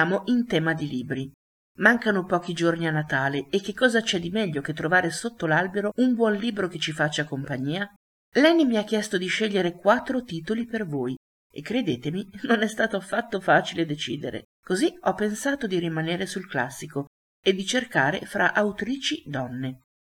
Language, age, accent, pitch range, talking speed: Italian, 50-69, native, 145-215 Hz, 170 wpm